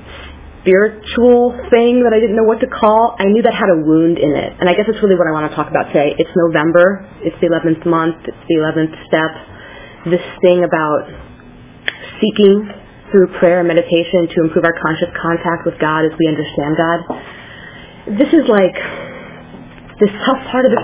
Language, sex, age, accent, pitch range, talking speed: English, female, 30-49, American, 160-190 Hz, 190 wpm